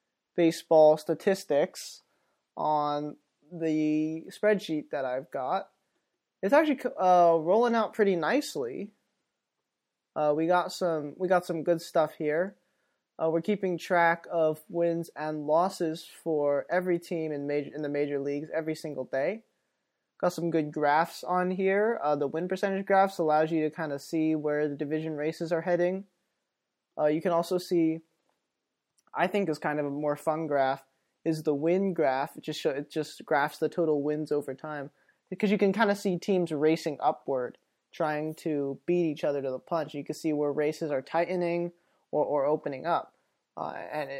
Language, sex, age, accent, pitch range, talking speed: English, male, 20-39, American, 150-175 Hz, 170 wpm